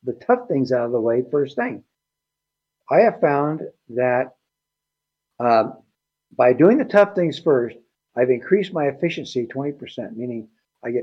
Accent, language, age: American, English, 60-79